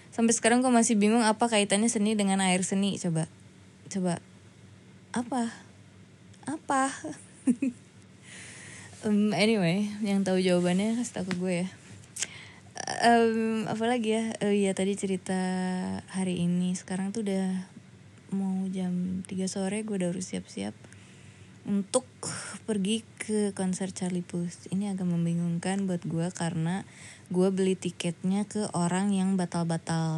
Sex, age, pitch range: female, 20-39, 170-225 Hz